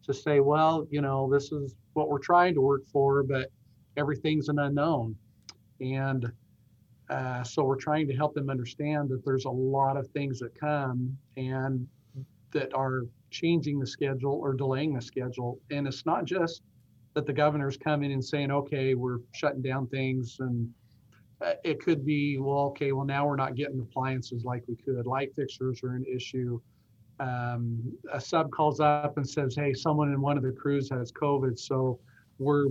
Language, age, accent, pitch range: English, 50-69, American, 125-140 Hz